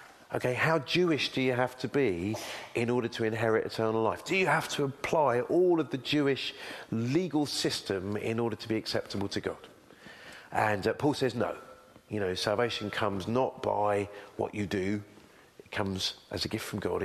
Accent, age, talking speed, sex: British, 40-59, 185 wpm, male